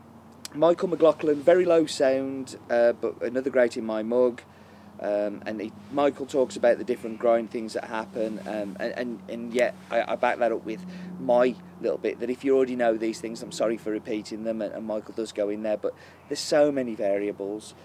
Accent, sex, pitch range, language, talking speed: British, male, 110-140 Hz, English, 210 wpm